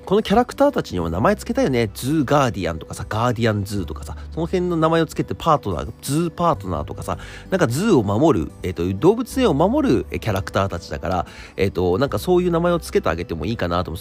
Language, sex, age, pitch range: Japanese, male, 40-59, 90-140 Hz